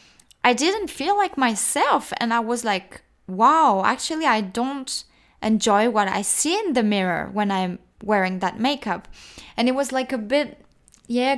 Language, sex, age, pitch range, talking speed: English, female, 10-29, 210-275 Hz, 170 wpm